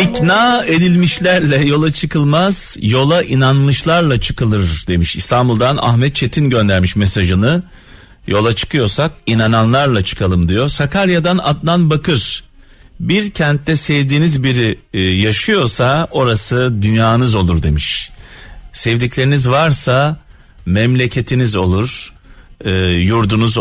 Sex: male